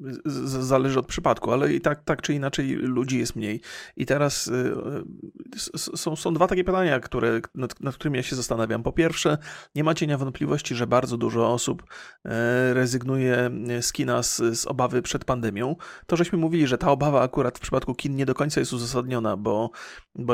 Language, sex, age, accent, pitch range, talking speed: Polish, male, 30-49, native, 120-140 Hz, 200 wpm